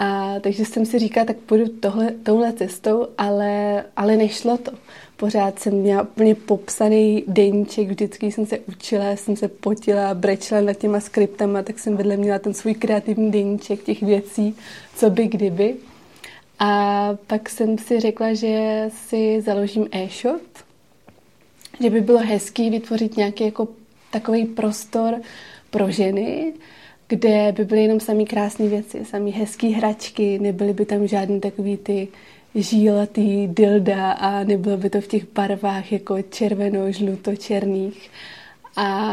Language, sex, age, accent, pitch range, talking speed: English, female, 20-39, Czech, 205-220 Hz, 145 wpm